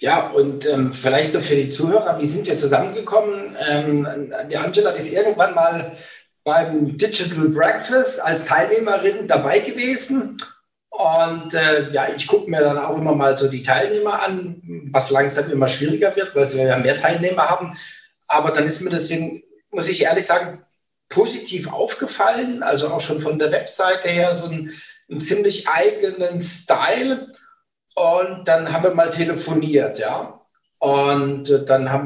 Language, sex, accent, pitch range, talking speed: German, male, German, 140-215 Hz, 155 wpm